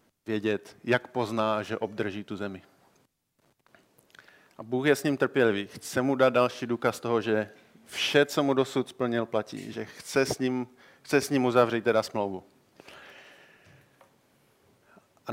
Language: Czech